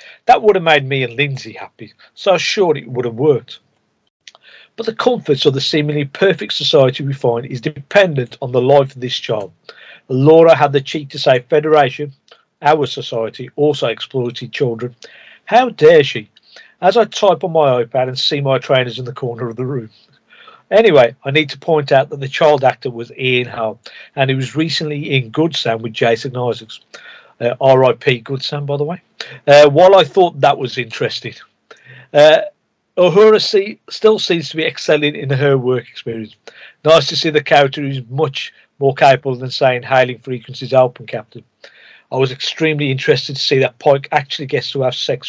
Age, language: 50-69, English